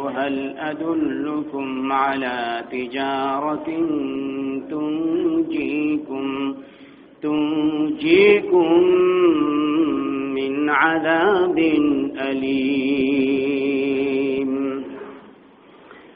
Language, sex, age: Bengali, male, 40-59